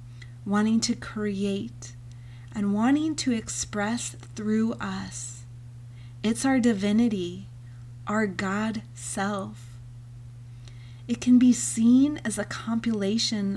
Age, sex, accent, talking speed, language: 30-49, female, American, 95 wpm, English